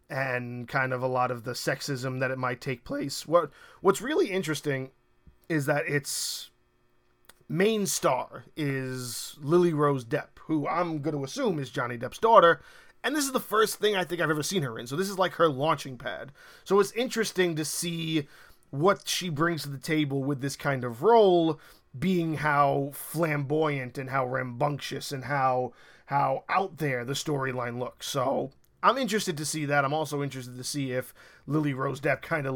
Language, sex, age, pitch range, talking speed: English, male, 20-39, 130-165 Hz, 190 wpm